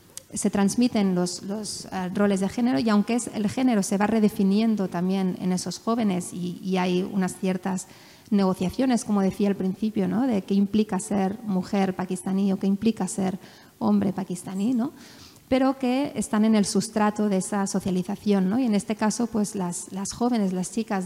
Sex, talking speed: female, 180 wpm